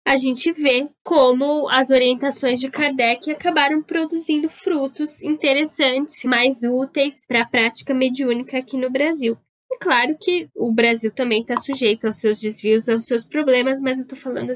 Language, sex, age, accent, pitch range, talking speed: Portuguese, female, 10-29, Brazilian, 220-270 Hz, 160 wpm